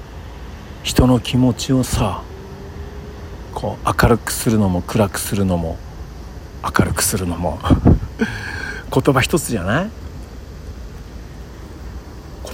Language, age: Japanese, 60-79